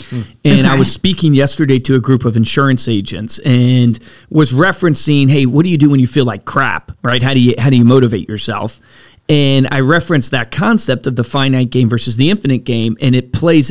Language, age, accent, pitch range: English, 40-59, American, 125-155 Hz